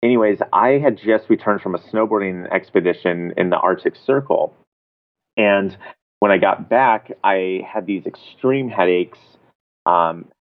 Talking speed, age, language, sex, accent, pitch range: 135 wpm, 30-49, English, male, American, 90-105 Hz